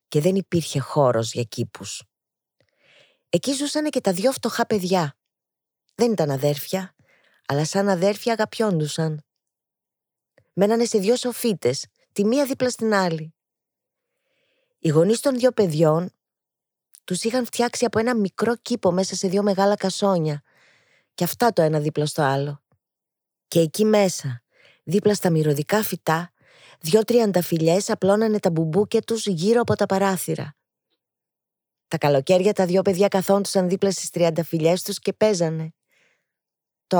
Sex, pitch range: female, 160-215 Hz